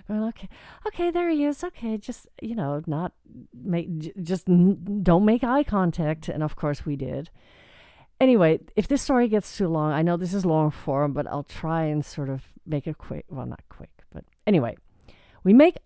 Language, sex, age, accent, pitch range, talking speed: English, female, 50-69, American, 150-210 Hz, 190 wpm